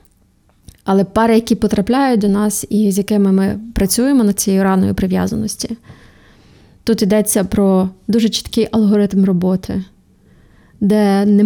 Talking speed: 125 wpm